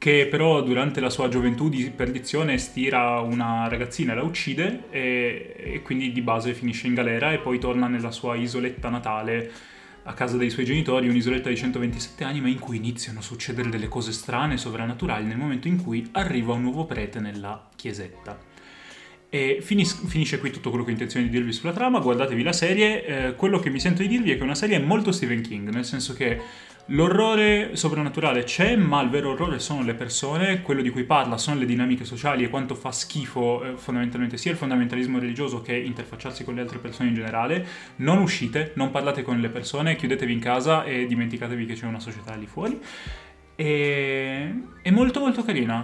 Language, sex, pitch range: Italian, male, 120-160 Hz